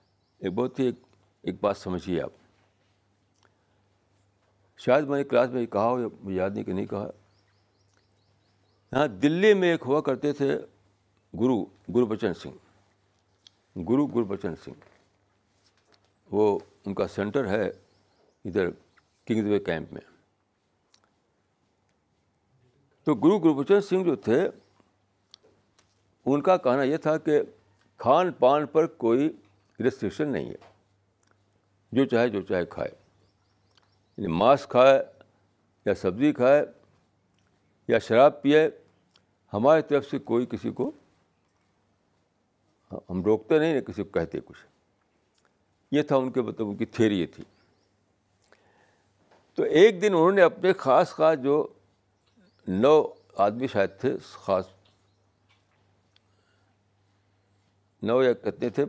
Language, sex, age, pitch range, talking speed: Urdu, male, 60-79, 100-130 Hz, 115 wpm